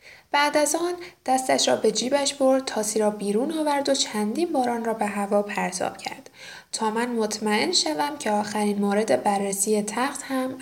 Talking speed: 170 wpm